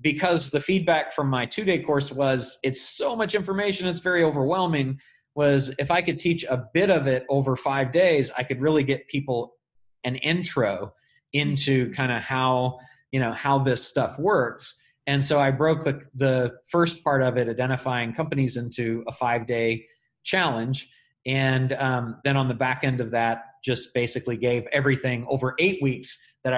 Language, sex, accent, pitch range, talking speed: English, male, American, 125-150 Hz, 175 wpm